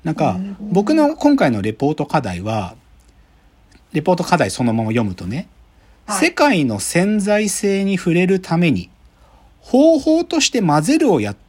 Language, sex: Japanese, male